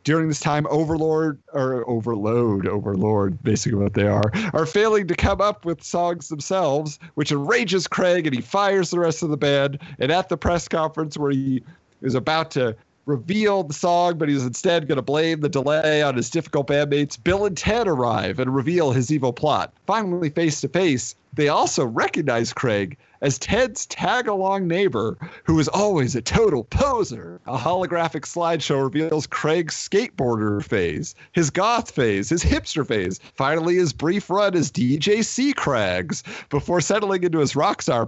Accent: American